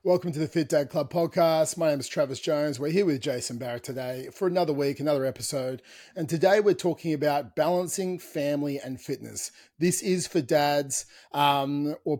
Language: English